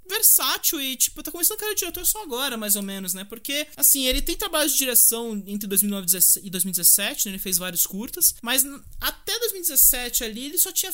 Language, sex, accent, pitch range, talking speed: English, male, Brazilian, 205-290 Hz, 205 wpm